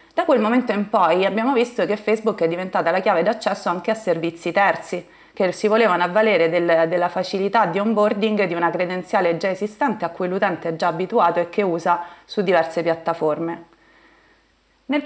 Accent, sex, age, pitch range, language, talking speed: native, female, 30-49, 175-215 Hz, Italian, 175 wpm